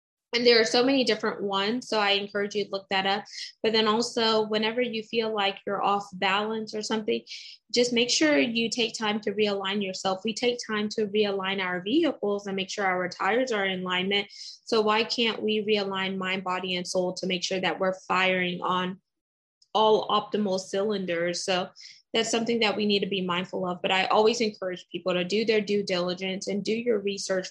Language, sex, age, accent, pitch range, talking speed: English, female, 20-39, American, 185-220 Hz, 205 wpm